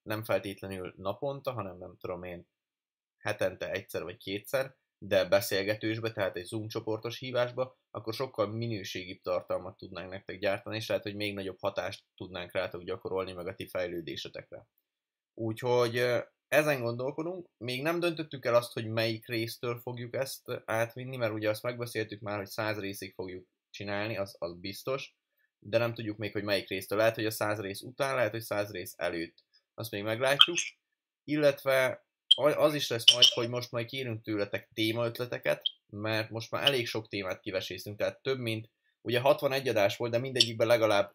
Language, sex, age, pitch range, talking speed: Hungarian, male, 20-39, 105-130 Hz, 165 wpm